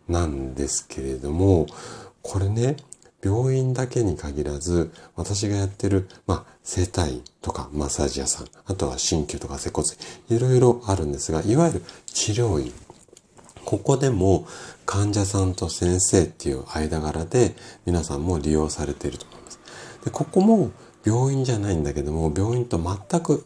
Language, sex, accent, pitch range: Japanese, male, native, 75-115 Hz